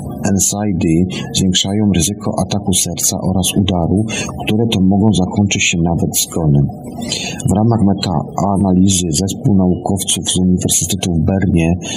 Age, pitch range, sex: 50-69, 90-105 Hz, male